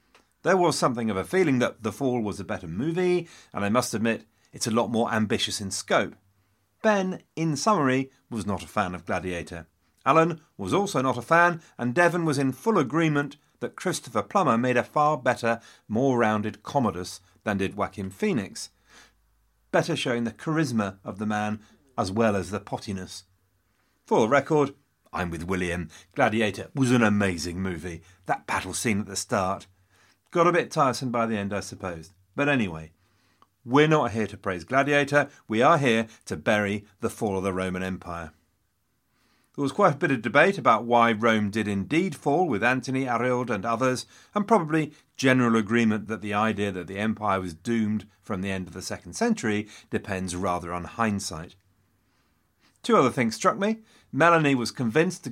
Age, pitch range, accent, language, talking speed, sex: 40-59, 95-140 Hz, British, English, 180 wpm, male